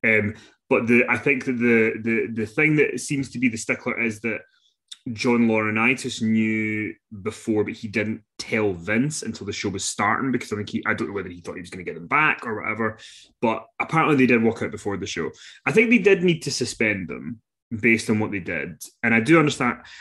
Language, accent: English, British